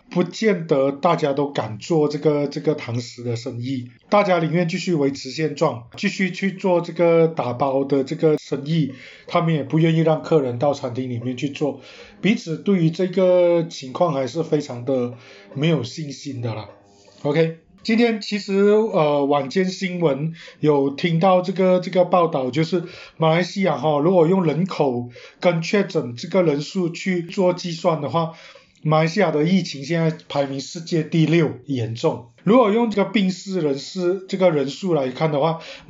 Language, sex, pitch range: Chinese, male, 140-180 Hz